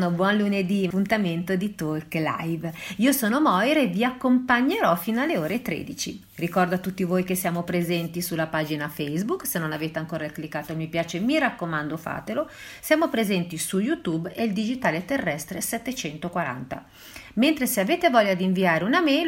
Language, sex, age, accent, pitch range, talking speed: Italian, female, 40-59, native, 155-205 Hz, 170 wpm